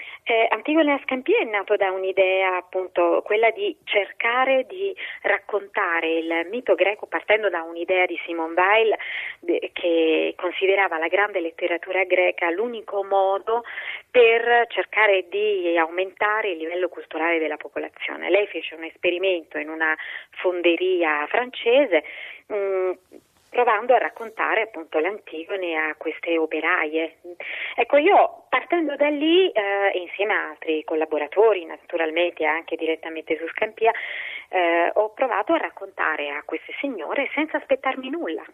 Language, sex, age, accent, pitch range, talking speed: Italian, female, 30-49, native, 160-215 Hz, 130 wpm